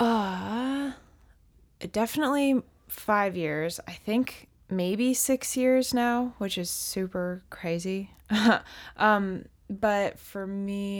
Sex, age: female, 20-39